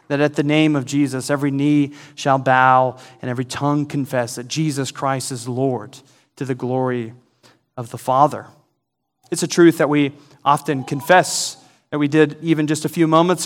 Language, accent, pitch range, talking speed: English, American, 135-155 Hz, 180 wpm